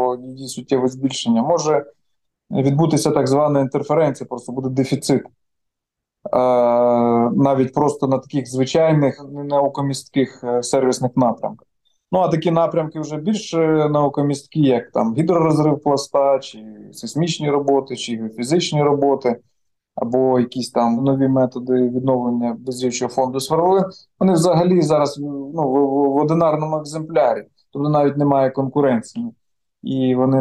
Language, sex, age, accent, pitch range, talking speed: Ukrainian, male, 20-39, native, 125-145 Hz, 120 wpm